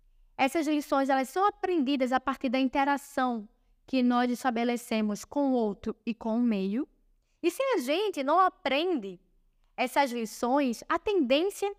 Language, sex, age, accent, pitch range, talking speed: Portuguese, female, 10-29, Brazilian, 240-360 Hz, 145 wpm